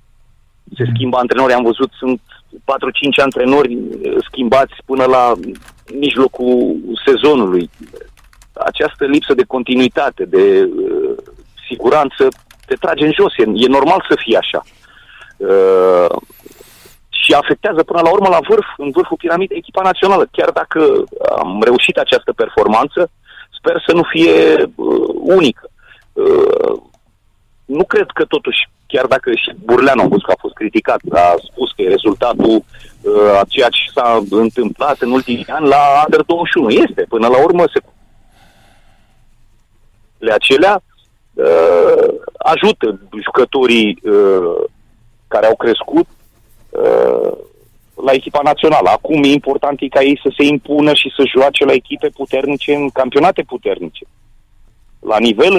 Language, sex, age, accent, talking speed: Romanian, male, 40-59, native, 130 wpm